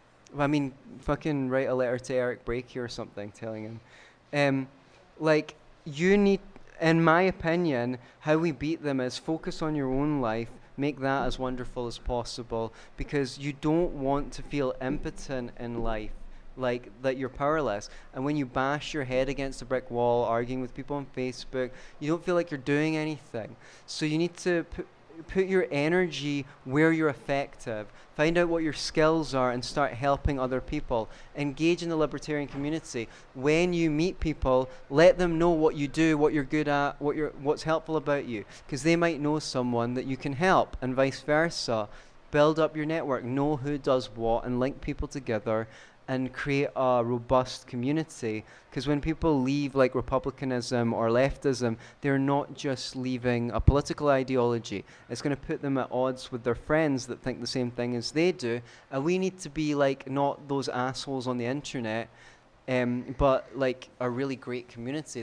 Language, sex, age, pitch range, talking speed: English, male, 30-49, 125-150 Hz, 185 wpm